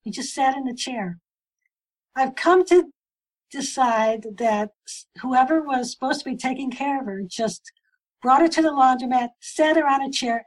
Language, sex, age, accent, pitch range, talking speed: English, female, 60-79, American, 215-280 Hz, 180 wpm